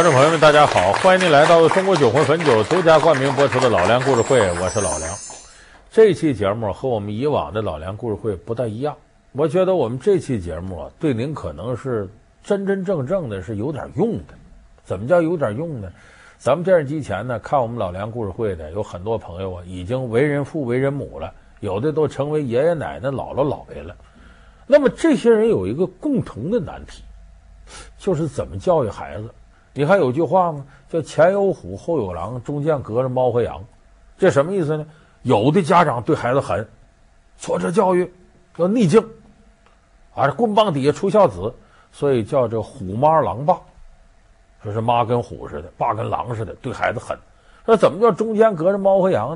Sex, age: male, 50-69